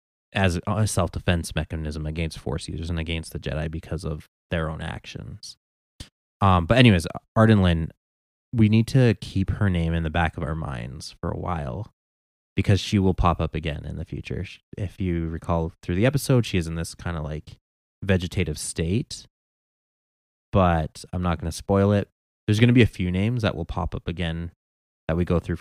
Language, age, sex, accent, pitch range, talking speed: English, 20-39, male, American, 80-100 Hz, 195 wpm